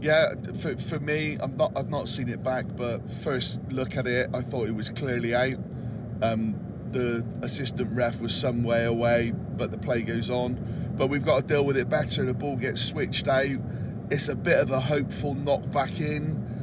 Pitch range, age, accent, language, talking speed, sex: 125-150 Hz, 30-49, British, English, 205 wpm, male